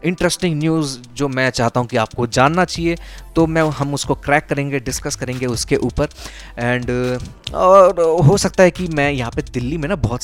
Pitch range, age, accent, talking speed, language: 110-145 Hz, 20-39, native, 200 wpm, Hindi